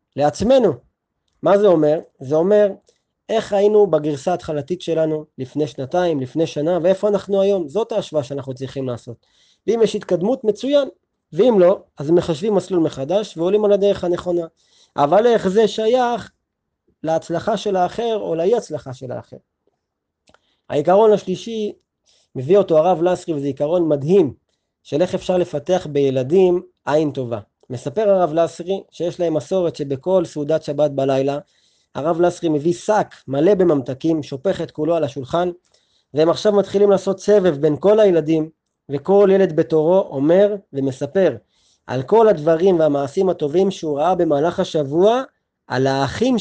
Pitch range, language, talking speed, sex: 150-190 Hz, Hebrew, 140 wpm, male